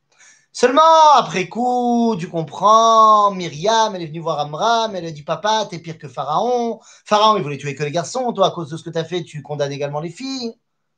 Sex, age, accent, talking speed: male, 30-49, French, 215 wpm